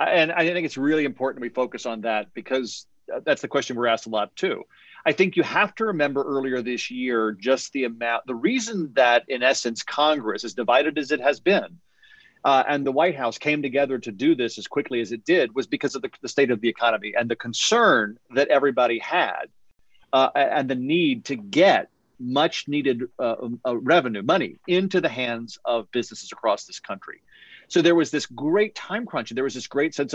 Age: 40-59